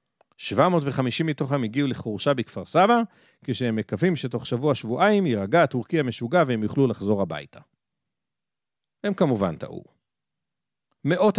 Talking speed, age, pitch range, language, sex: 110 wpm, 40-59, 115-165 Hz, Hebrew, male